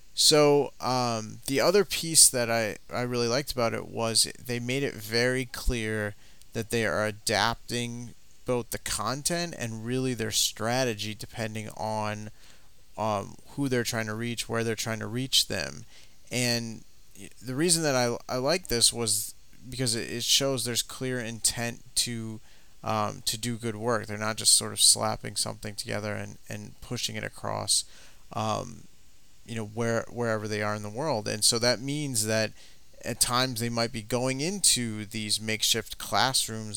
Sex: male